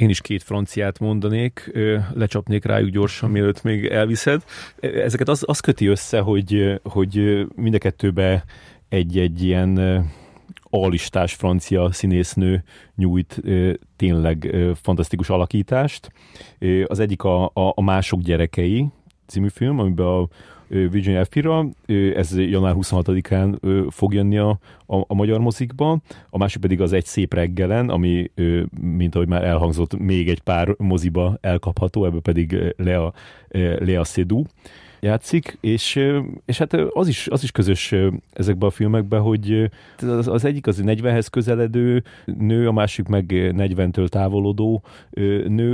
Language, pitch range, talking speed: Hungarian, 90-110 Hz, 130 wpm